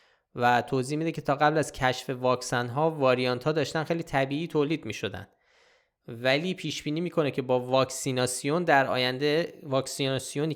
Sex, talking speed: male, 155 wpm